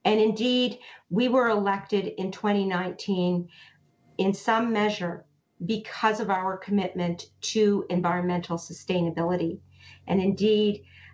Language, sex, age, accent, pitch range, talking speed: English, female, 50-69, American, 175-215 Hz, 100 wpm